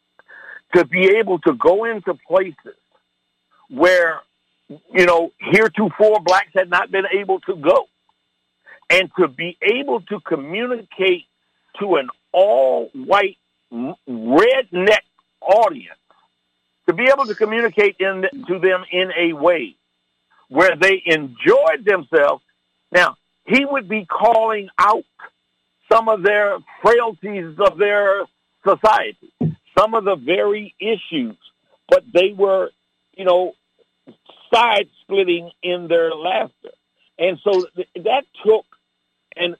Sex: male